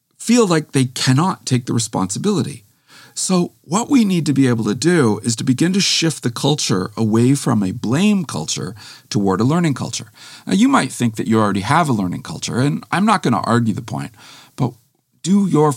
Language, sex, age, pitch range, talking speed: English, male, 50-69, 115-155 Hz, 200 wpm